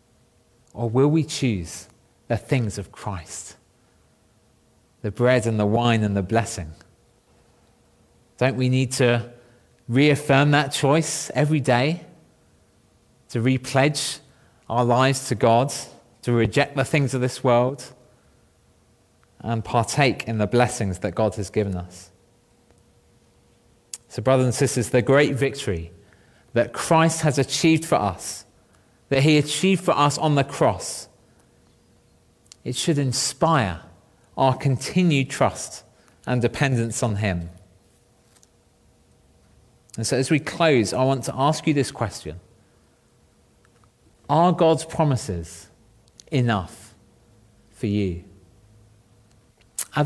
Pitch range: 105-140 Hz